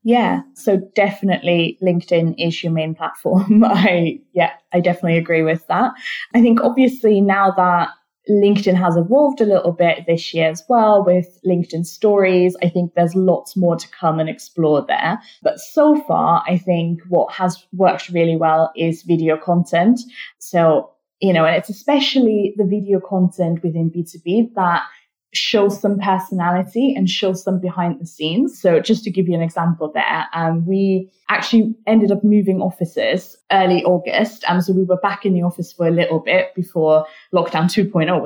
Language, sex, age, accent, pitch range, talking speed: English, female, 20-39, British, 170-205 Hz, 170 wpm